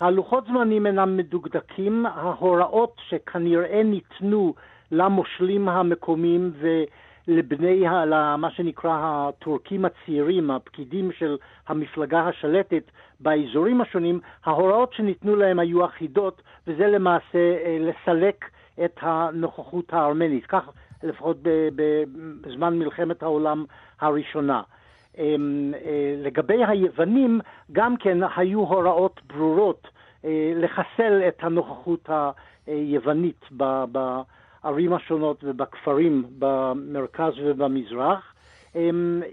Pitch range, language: 155-185 Hz, Hebrew